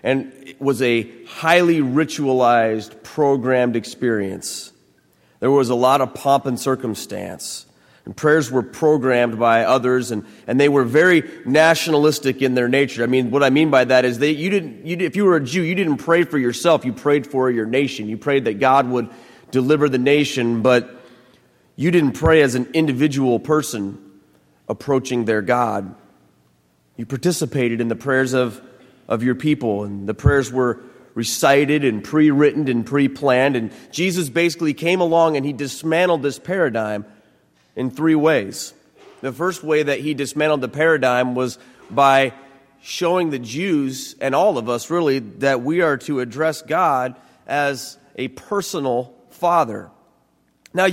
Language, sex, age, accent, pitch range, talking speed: English, male, 30-49, American, 125-160 Hz, 165 wpm